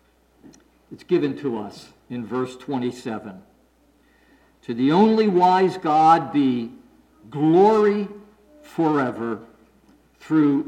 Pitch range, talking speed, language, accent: 150-205 Hz, 90 wpm, English, American